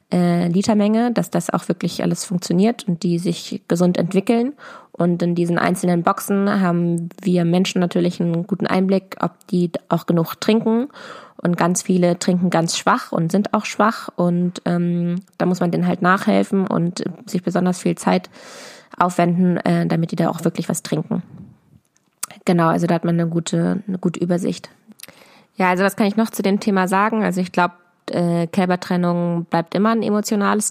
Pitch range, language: 175-200 Hz, German